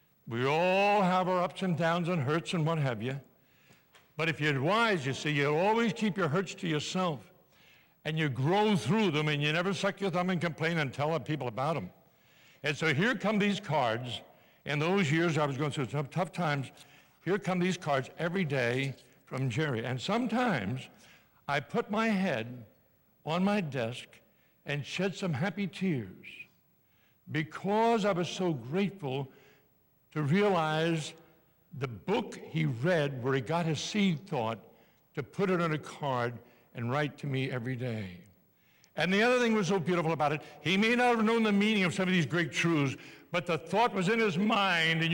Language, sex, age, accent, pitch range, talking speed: English, male, 60-79, American, 140-190 Hz, 185 wpm